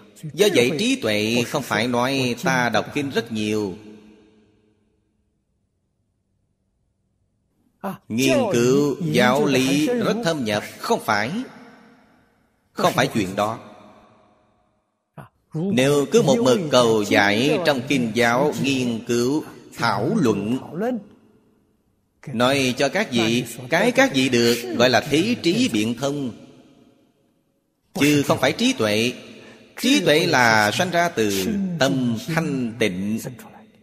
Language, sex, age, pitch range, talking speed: Vietnamese, male, 30-49, 105-155 Hz, 115 wpm